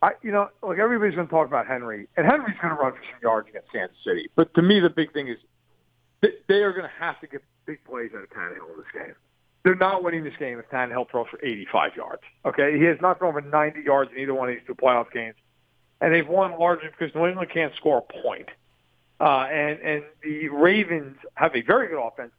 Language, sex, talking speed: English, male, 245 wpm